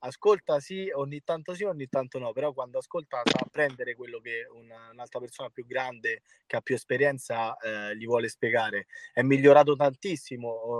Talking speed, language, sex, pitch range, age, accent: 165 wpm, Italian, male, 125-170 Hz, 20-39, native